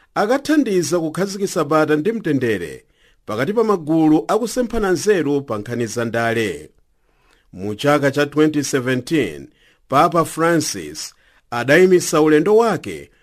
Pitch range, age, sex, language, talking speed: 135-185 Hz, 50-69, male, English, 90 wpm